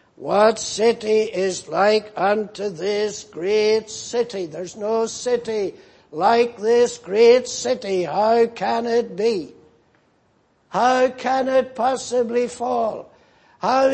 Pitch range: 175-230 Hz